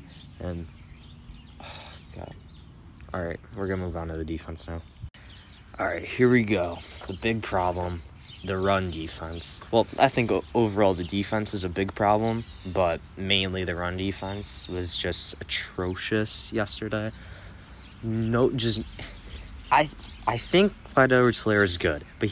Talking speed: 145 wpm